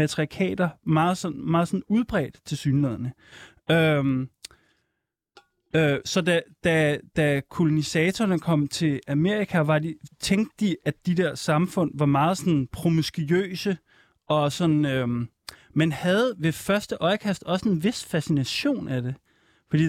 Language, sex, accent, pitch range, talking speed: Danish, male, native, 140-170 Hz, 135 wpm